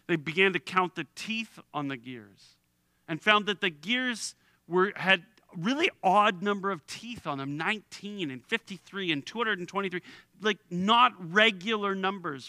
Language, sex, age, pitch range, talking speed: English, male, 40-59, 145-195 Hz, 160 wpm